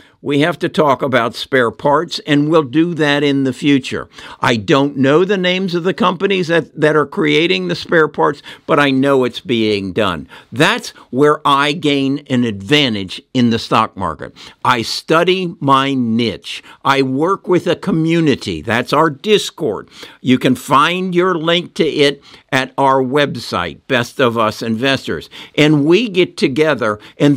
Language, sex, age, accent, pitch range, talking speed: English, male, 60-79, American, 135-175 Hz, 165 wpm